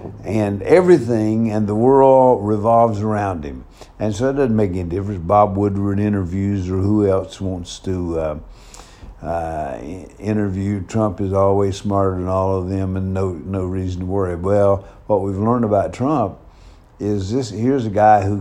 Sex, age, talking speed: male, 50-69, 170 wpm